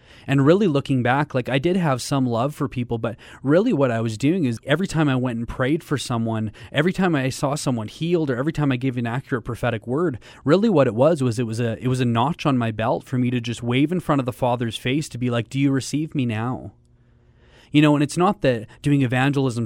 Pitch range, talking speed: 120-145 Hz, 255 wpm